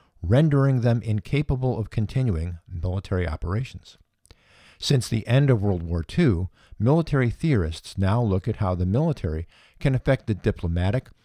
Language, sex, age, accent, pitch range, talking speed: English, male, 50-69, American, 90-120 Hz, 140 wpm